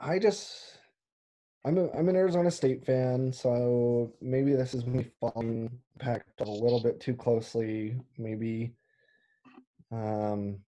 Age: 20-39